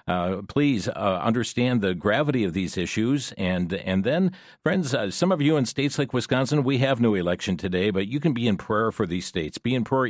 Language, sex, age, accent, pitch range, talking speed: English, male, 50-69, American, 100-140 Hz, 225 wpm